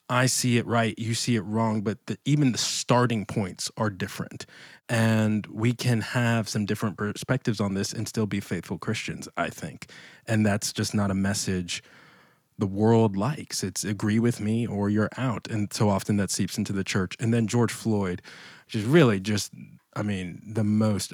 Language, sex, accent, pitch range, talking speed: English, male, American, 100-120 Hz, 195 wpm